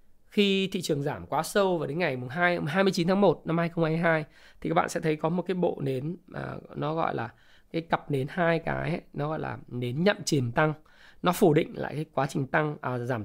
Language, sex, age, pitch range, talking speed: Vietnamese, male, 20-39, 130-170 Hz, 225 wpm